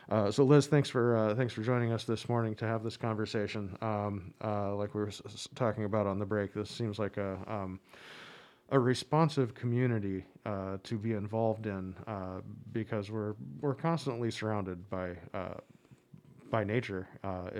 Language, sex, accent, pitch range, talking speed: English, male, American, 95-115 Hz, 170 wpm